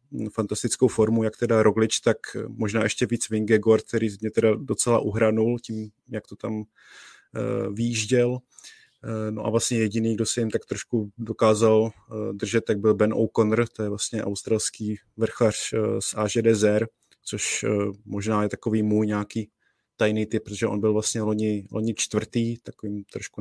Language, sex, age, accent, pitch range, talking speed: Czech, male, 20-39, native, 100-110 Hz, 150 wpm